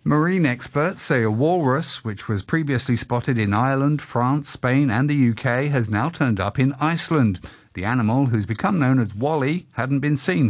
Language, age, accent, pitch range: English, 50-69, British, 115-145 Hz